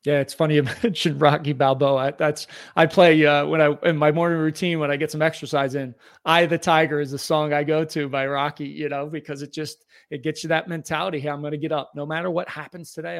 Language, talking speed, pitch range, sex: English, 250 wpm, 135-165 Hz, male